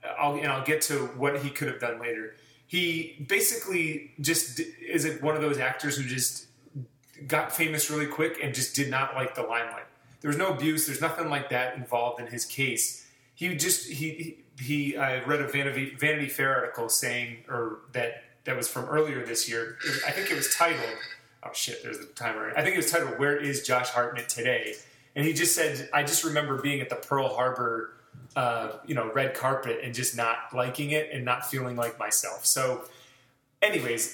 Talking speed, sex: 200 wpm, male